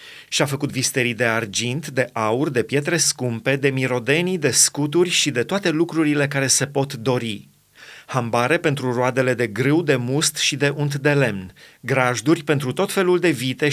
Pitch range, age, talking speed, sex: 125-160 Hz, 30-49, 175 wpm, male